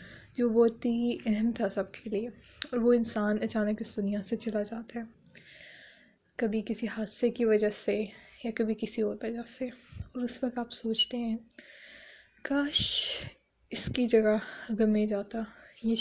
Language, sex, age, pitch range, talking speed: Urdu, female, 20-39, 215-240 Hz, 165 wpm